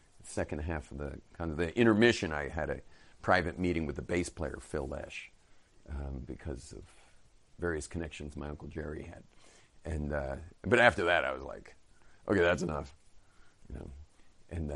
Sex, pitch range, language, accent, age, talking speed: male, 75-100 Hz, English, American, 50-69, 170 wpm